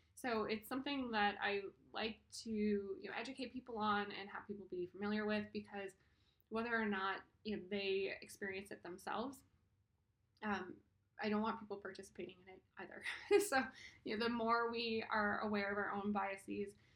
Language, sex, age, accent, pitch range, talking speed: English, female, 20-39, American, 190-230 Hz, 175 wpm